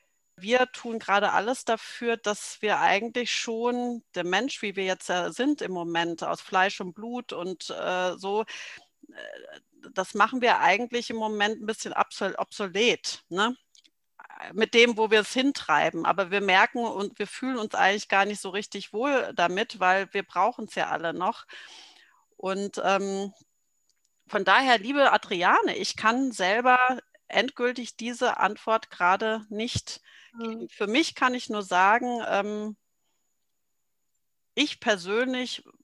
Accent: German